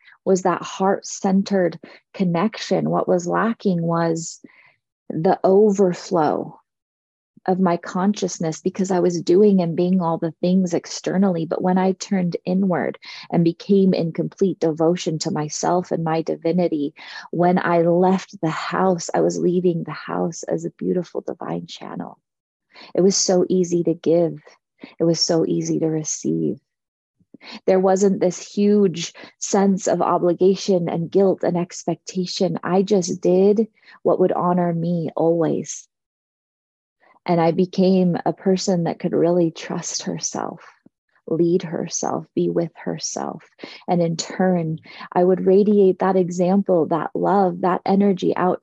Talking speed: 140 wpm